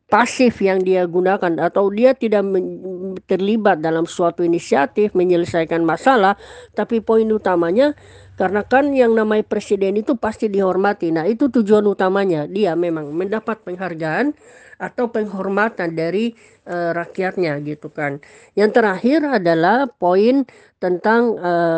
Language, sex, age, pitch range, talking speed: Indonesian, female, 20-39, 180-230 Hz, 120 wpm